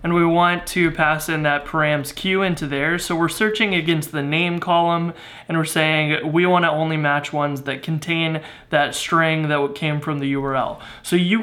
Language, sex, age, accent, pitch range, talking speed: English, male, 20-39, American, 150-180 Hz, 195 wpm